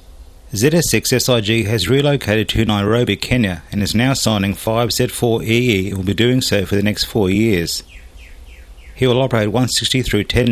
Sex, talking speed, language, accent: male, 155 wpm, English, Australian